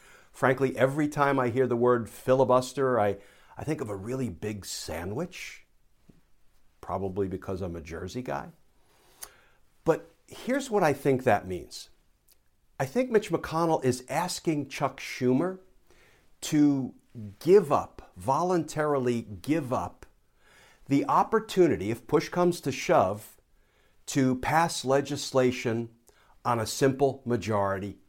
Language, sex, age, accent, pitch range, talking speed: English, male, 50-69, American, 110-145 Hz, 120 wpm